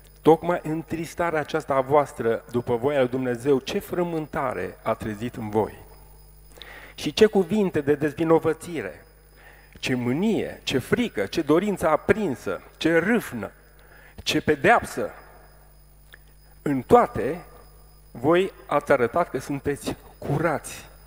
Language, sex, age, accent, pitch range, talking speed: Romanian, male, 40-59, native, 120-165 Hz, 110 wpm